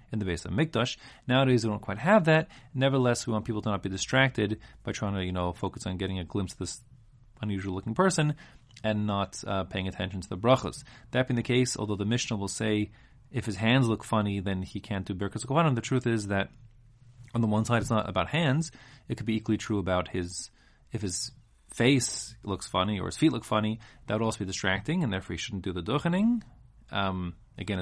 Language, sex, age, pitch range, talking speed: English, male, 30-49, 100-130 Hz, 220 wpm